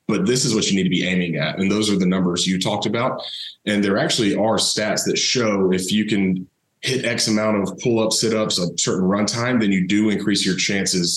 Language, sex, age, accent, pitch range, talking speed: English, male, 30-49, American, 95-110 Hz, 235 wpm